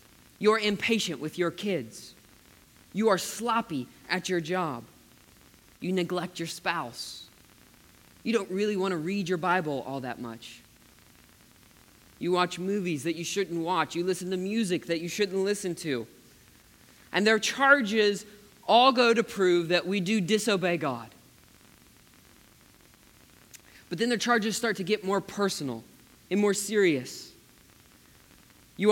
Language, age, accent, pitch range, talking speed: English, 20-39, American, 160-215 Hz, 140 wpm